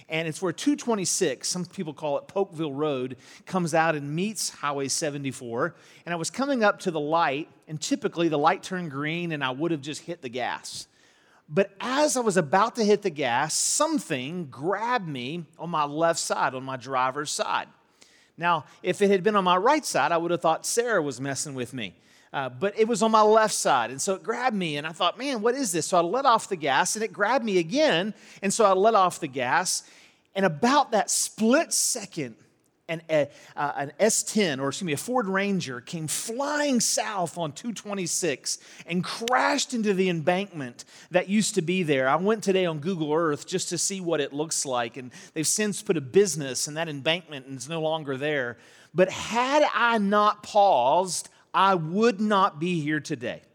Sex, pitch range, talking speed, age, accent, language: male, 155-210 Hz, 205 wpm, 40-59, American, English